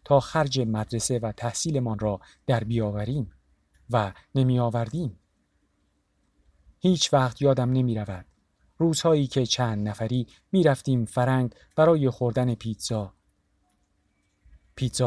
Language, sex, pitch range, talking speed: Persian, male, 100-140 Hz, 110 wpm